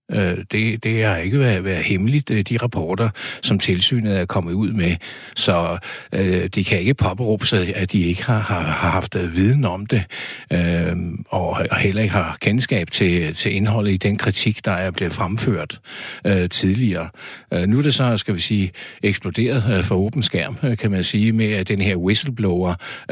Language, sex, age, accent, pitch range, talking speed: Danish, male, 60-79, native, 95-110 Hz, 185 wpm